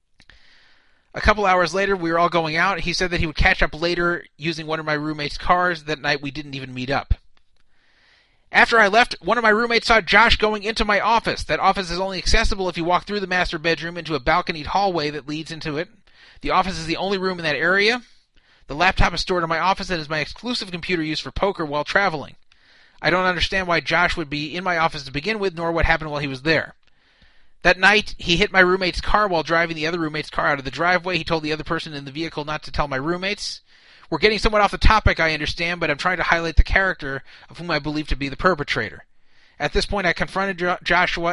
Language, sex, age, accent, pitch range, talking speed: English, male, 30-49, American, 155-185 Hz, 245 wpm